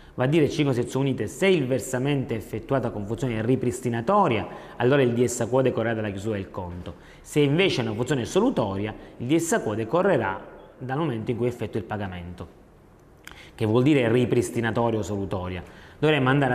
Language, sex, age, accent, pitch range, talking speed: Italian, male, 30-49, native, 115-145 Hz, 165 wpm